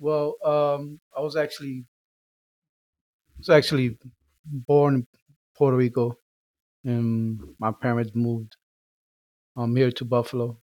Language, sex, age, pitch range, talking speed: English, male, 30-49, 115-135 Hz, 110 wpm